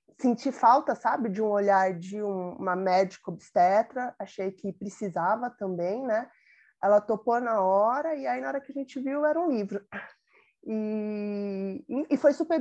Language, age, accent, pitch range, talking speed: Portuguese, 20-39, Brazilian, 205-265 Hz, 165 wpm